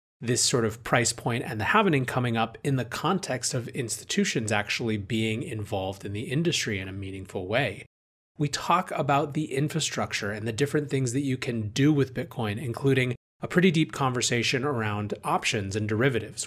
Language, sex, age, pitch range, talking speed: English, male, 30-49, 110-145 Hz, 180 wpm